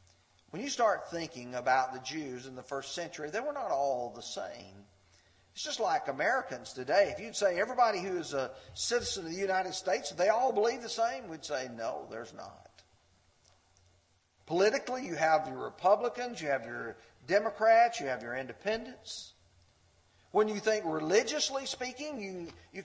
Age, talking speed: 50-69, 165 wpm